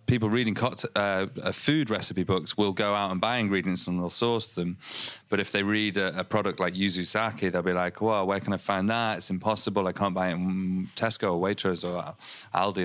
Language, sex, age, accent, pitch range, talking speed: English, male, 30-49, British, 90-105 Hz, 225 wpm